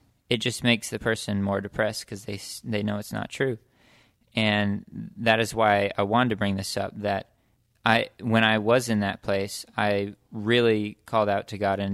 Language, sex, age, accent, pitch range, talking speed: English, male, 20-39, American, 100-110 Hz, 195 wpm